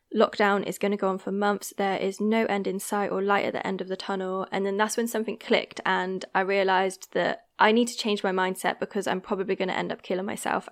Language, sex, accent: English, female, British